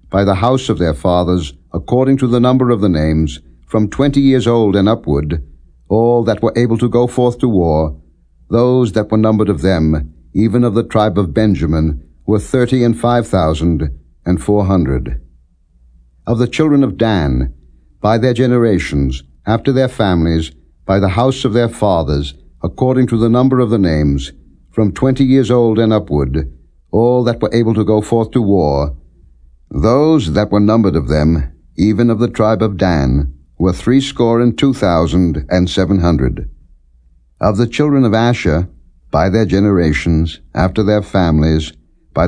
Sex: male